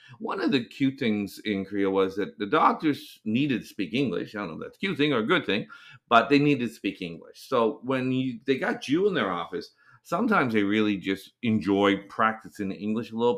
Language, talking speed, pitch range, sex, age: English, 230 wpm, 105-140 Hz, male, 50-69